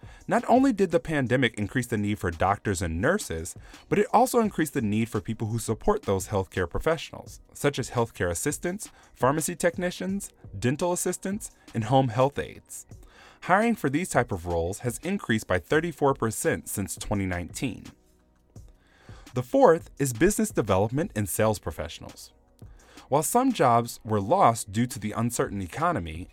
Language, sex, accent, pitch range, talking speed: English, male, American, 100-160 Hz, 155 wpm